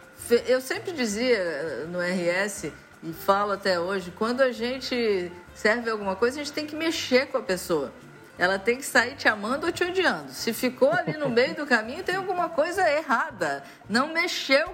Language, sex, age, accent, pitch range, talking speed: Portuguese, female, 50-69, Brazilian, 190-275 Hz, 185 wpm